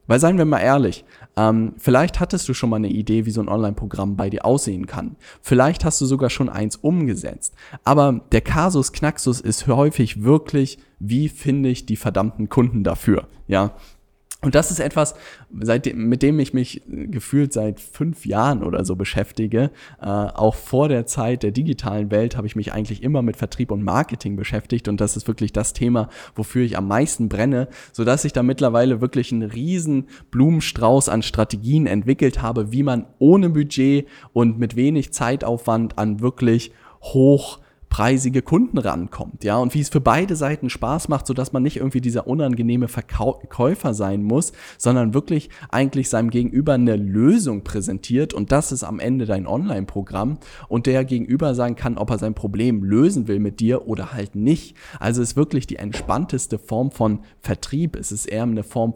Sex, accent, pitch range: male, German, 110-140 Hz